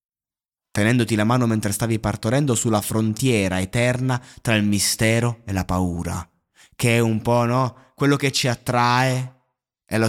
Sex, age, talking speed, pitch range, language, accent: male, 20-39, 155 wpm, 105-130 Hz, Italian, native